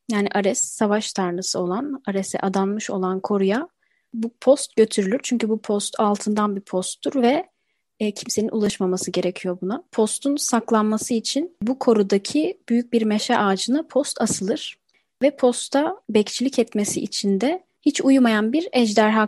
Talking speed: 140 wpm